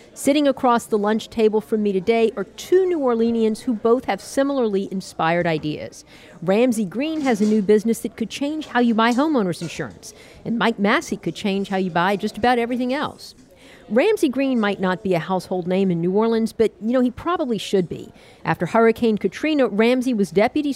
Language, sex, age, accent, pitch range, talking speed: English, female, 50-69, American, 190-250 Hz, 195 wpm